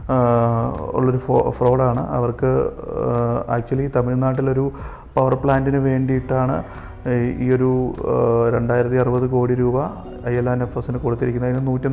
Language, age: Malayalam, 30-49